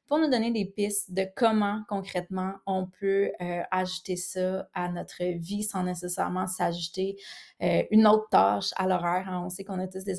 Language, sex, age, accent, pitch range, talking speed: French, female, 20-39, Canadian, 180-215 Hz, 190 wpm